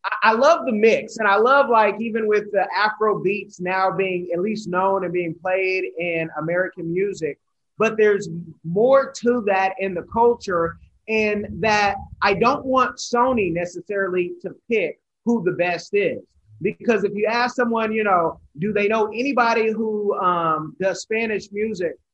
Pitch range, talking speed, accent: 185-225 Hz, 165 wpm, American